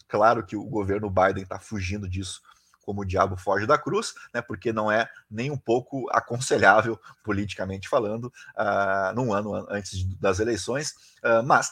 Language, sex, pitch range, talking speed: Portuguese, male, 100-130 Hz, 155 wpm